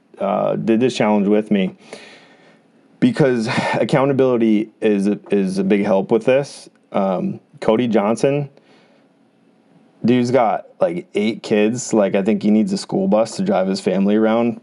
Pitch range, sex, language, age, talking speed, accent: 100-120 Hz, male, English, 20-39, 150 wpm, American